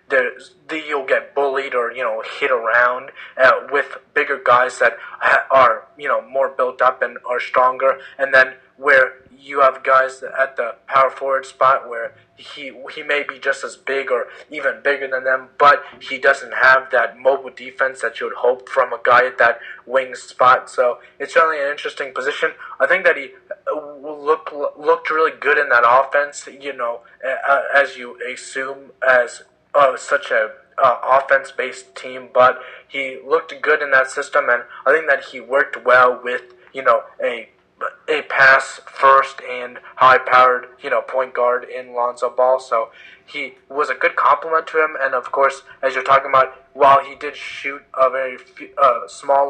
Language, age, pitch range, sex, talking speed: English, 20-39, 130-140 Hz, male, 180 wpm